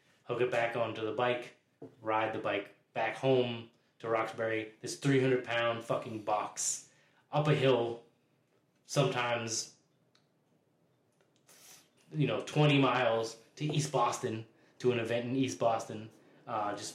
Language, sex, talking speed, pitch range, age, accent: English, male, 125 wpm, 115-135 Hz, 20-39, American